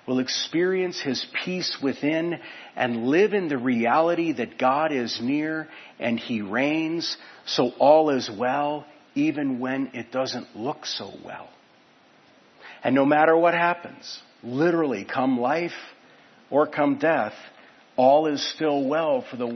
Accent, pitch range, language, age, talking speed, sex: American, 125-175 Hz, English, 50-69, 140 wpm, male